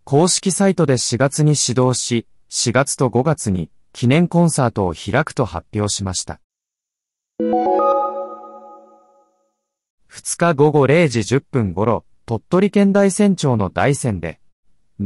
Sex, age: male, 30-49